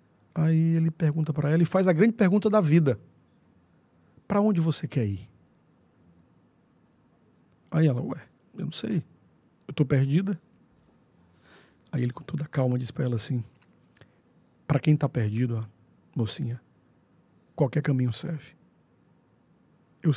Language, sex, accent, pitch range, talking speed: Portuguese, male, Brazilian, 140-190 Hz, 135 wpm